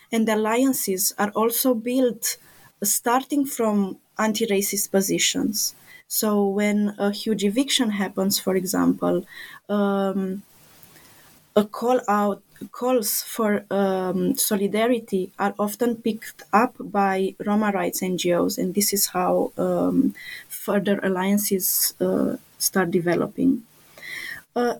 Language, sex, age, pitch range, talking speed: English, female, 20-39, 200-240 Hz, 105 wpm